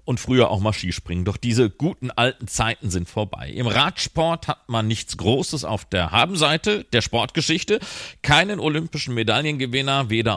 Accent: German